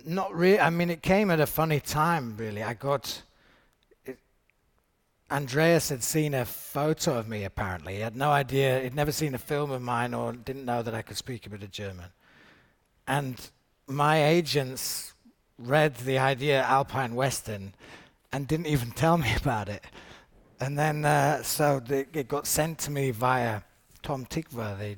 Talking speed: 175 wpm